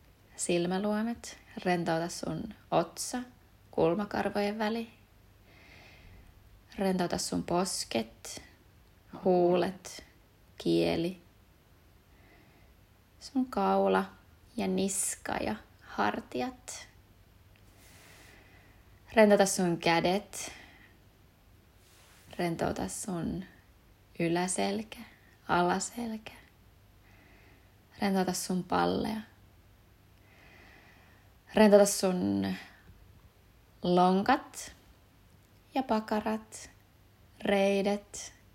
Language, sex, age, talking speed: Finnish, female, 20-39, 50 wpm